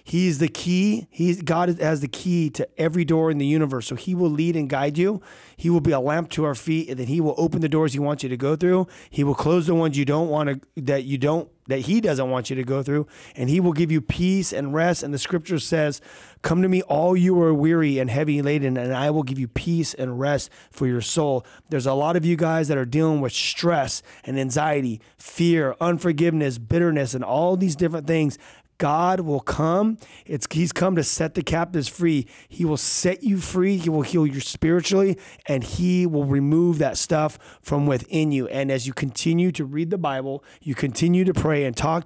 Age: 30-49